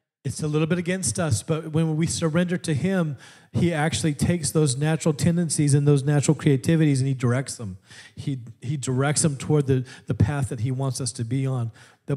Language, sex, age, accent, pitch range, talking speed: English, male, 40-59, American, 125-155 Hz, 205 wpm